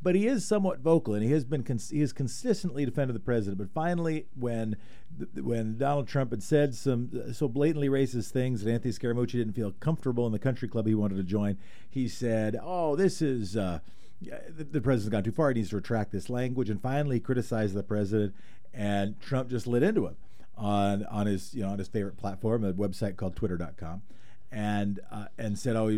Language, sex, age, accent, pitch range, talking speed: English, male, 50-69, American, 100-135 Hz, 205 wpm